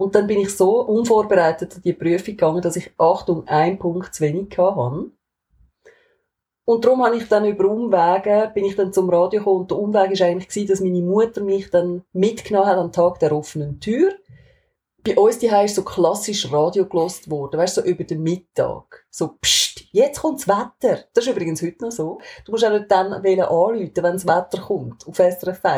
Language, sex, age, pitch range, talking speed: German, female, 30-49, 175-220 Hz, 205 wpm